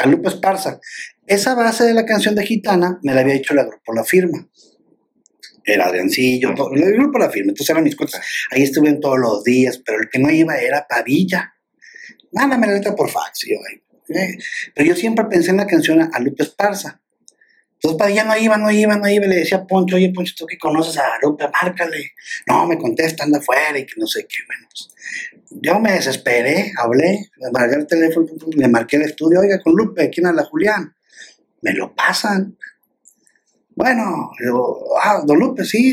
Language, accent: Spanish, Mexican